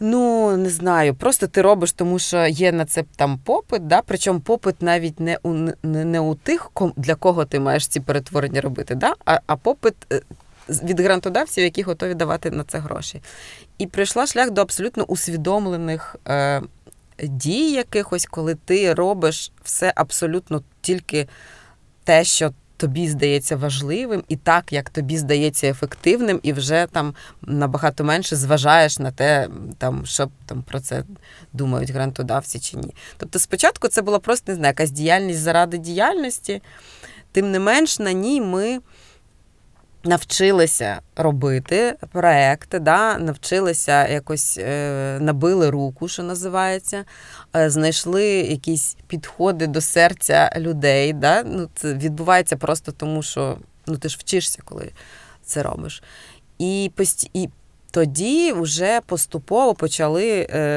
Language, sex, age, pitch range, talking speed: Ukrainian, female, 20-39, 150-185 Hz, 135 wpm